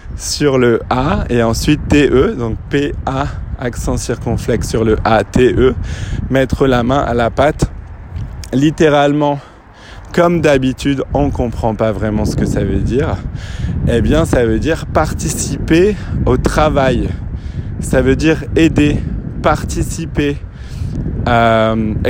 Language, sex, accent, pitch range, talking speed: French, male, French, 105-135 Hz, 130 wpm